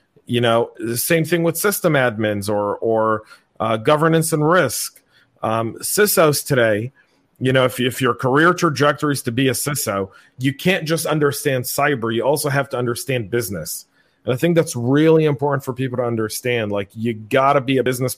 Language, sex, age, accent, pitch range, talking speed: English, male, 40-59, American, 120-140 Hz, 190 wpm